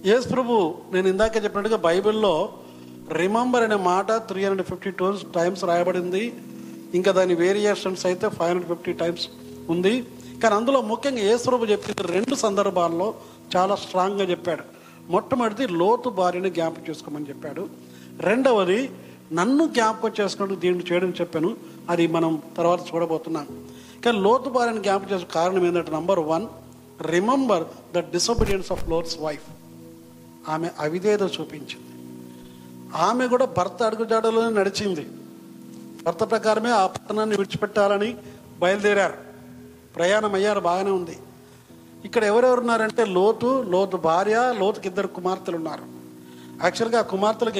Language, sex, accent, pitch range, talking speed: Telugu, male, native, 165-210 Hz, 115 wpm